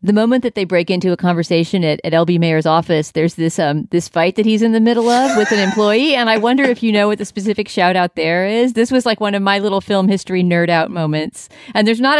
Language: English